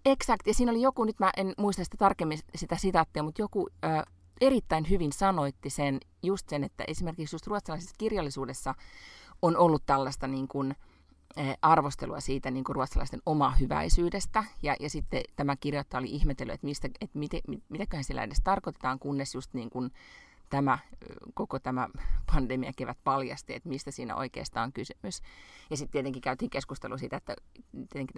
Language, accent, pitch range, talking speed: Finnish, native, 130-185 Hz, 160 wpm